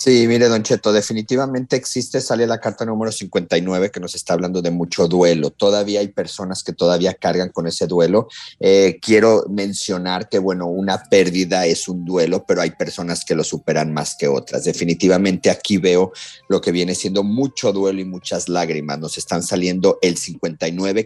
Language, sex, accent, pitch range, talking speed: Spanish, male, Mexican, 90-110 Hz, 180 wpm